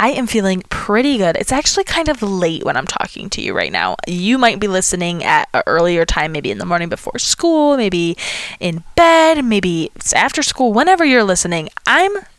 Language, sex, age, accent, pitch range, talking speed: English, female, 20-39, American, 180-245 Hz, 200 wpm